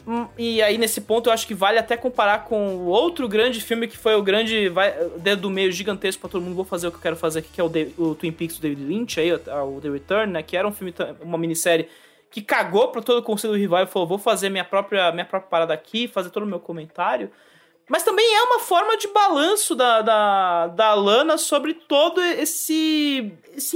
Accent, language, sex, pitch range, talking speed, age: Brazilian, English, male, 180-290 Hz, 235 wpm, 20-39